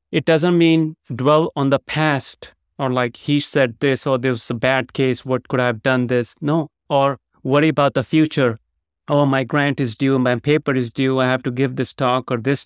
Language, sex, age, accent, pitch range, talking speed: English, male, 30-49, Indian, 130-155 Hz, 225 wpm